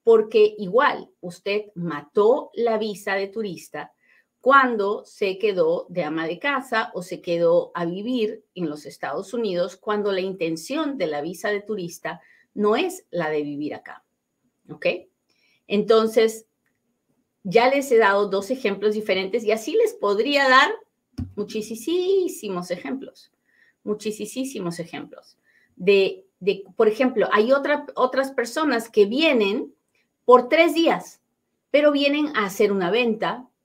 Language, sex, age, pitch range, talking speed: Spanish, female, 40-59, 190-280 Hz, 135 wpm